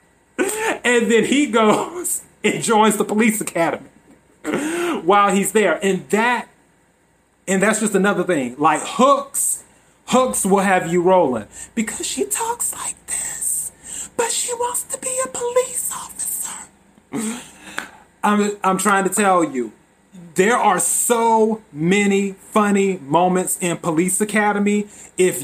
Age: 30-49